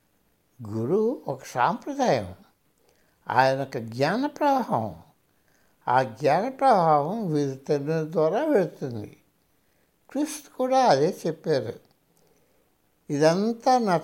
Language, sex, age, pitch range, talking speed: Telugu, male, 60-79, 140-200 Hz, 85 wpm